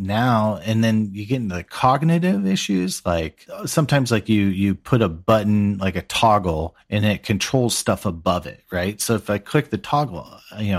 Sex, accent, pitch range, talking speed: male, American, 90-110 Hz, 190 wpm